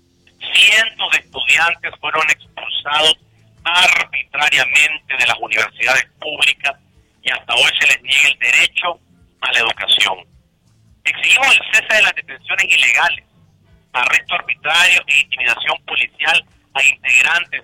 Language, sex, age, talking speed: Spanish, male, 50-69, 120 wpm